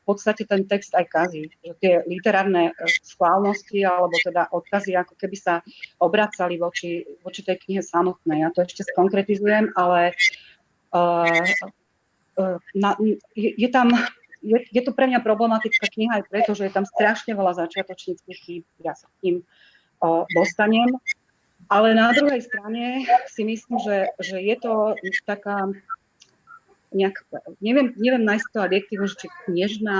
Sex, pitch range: female, 180-220 Hz